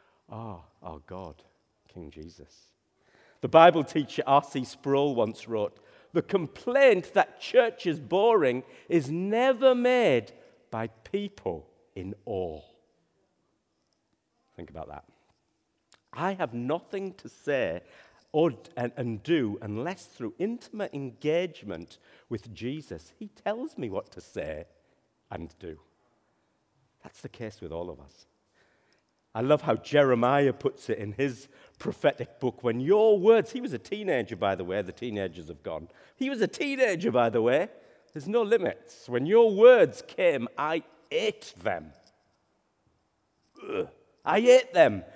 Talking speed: 135 wpm